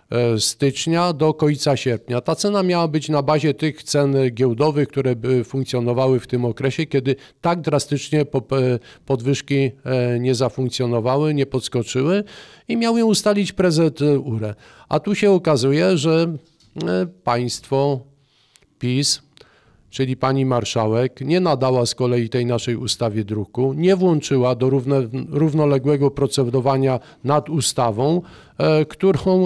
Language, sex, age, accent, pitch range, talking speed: Polish, male, 50-69, native, 125-155 Hz, 115 wpm